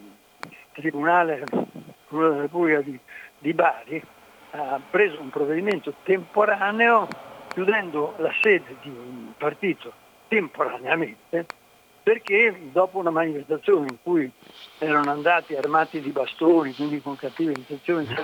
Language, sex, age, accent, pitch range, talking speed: Italian, male, 60-79, native, 150-200 Hz, 105 wpm